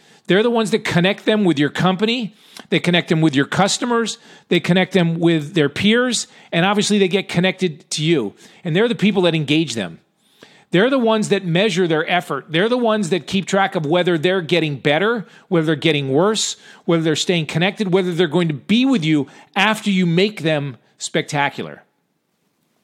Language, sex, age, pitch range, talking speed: English, male, 40-59, 155-200 Hz, 190 wpm